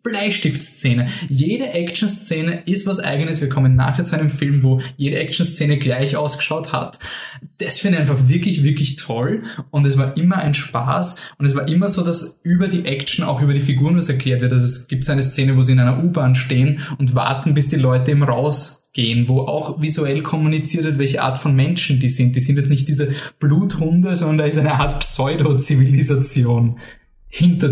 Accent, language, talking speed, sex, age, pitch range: German, German, 195 wpm, male, 20-39, 140-180 Hz